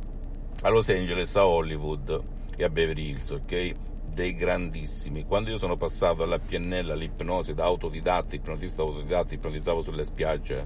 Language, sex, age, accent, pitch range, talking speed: Italian, male, 50-69, native, 75-90 Hz, 145 wpm